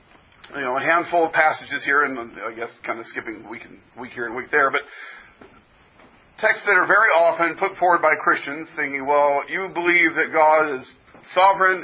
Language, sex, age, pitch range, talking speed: English, male, 40-59, 135-175 Hz, 195 wpm